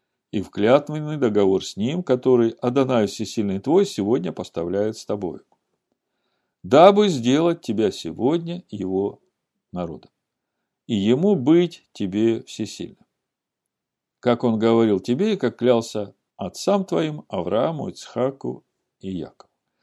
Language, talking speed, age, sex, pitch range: Russian, 110 wpm, 50-69, male, 100-150 Hz